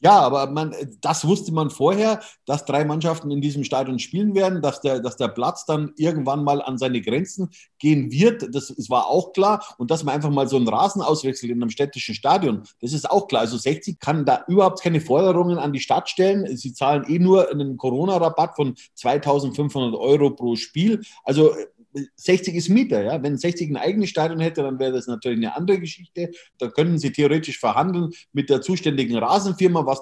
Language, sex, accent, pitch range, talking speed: German, male, German, 135-180 Hz, 200 wpm